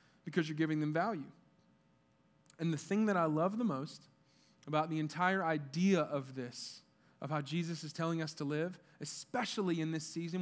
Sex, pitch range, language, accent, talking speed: male, 155-205 Hz, English, American, 180 wpm